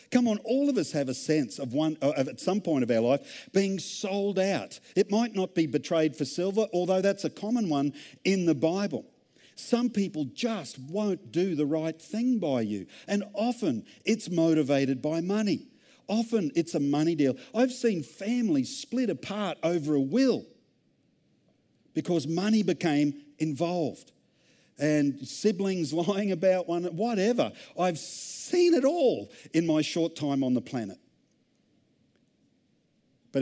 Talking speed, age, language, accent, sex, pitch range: 155 wpm, 50-69, English, Australian, male, 135-200 Hz